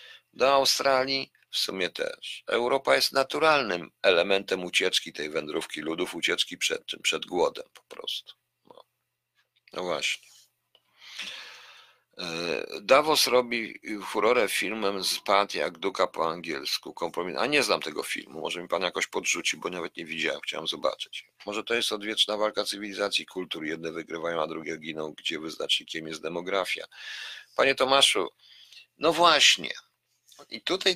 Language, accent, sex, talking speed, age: Polish, native, male, 140 wpm, 50-69